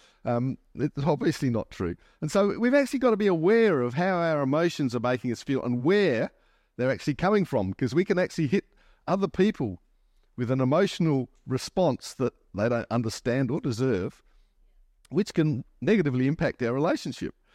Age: 50-69